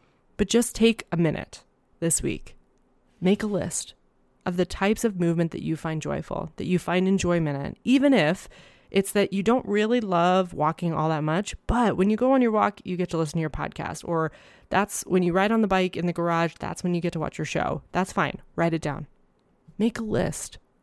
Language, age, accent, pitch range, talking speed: English, 20-39, American, 165-195 Hz, 220 wpm